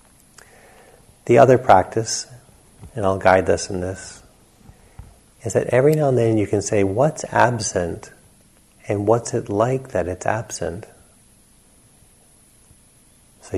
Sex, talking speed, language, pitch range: male, 125 wpm, English, 90-110 Hz